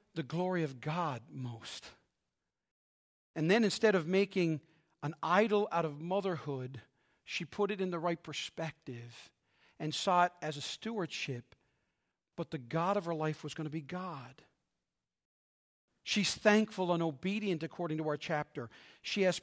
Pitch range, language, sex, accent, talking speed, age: 160-200 Hz, English, male, American, 150 wpm, 50-69